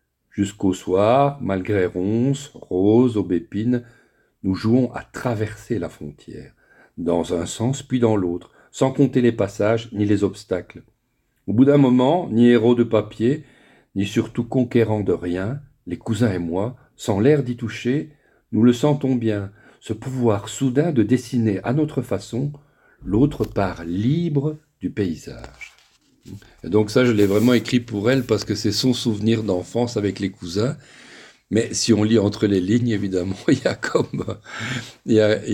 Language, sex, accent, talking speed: French, male, French, 165 wpm